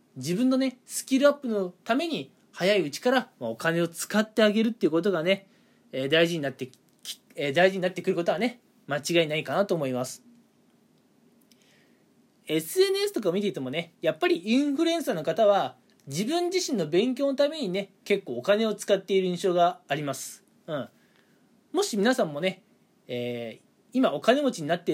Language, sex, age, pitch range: Japanese, male, 20-39, 170-260 Hz